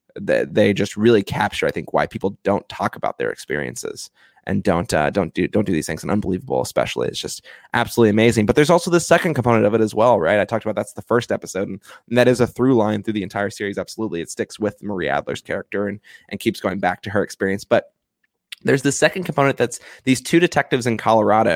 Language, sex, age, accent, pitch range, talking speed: English, male, 20-39, American, 100-120 Hz, 235 wpm